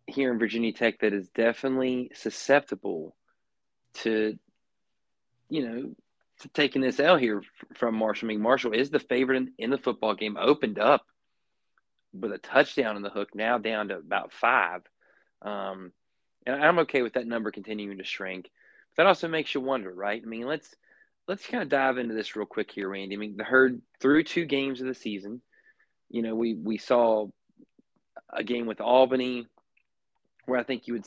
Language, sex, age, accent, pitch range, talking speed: English, male, 20-39, American, 105-130 Hz, 185 wpm